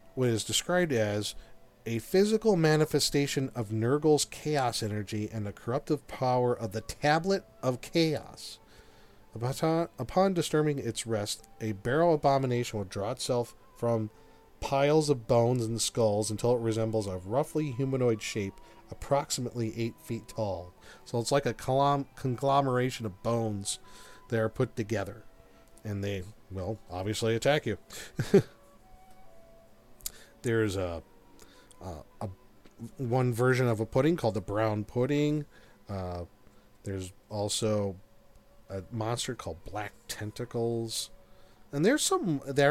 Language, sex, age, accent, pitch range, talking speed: English, male, 40-59, American, 105-135 Hz, 125 wpm